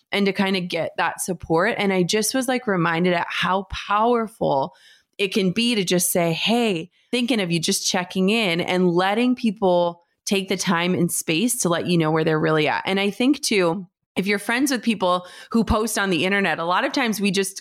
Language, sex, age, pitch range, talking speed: English, female, 20-39, 180-240 Hz, 220 wpm